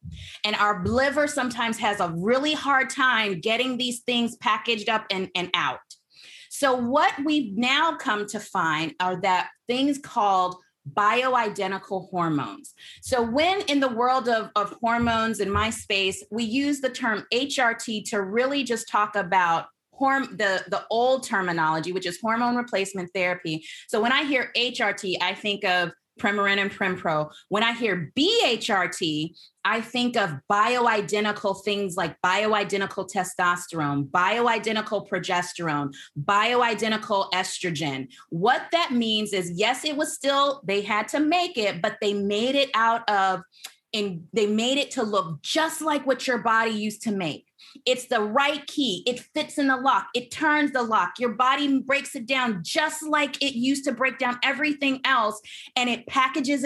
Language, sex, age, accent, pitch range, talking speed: English, female, 30-49, American, 195-260 Hz, 160 wpm